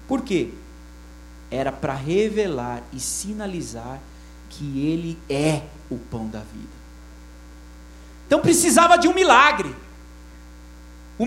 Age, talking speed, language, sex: 40-59, 105 wpm, Portuguese, male